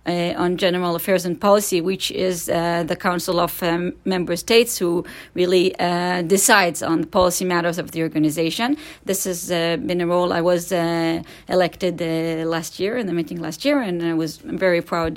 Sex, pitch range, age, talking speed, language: female, 175-200 Hz, 30-49, 190 wpm, Dutch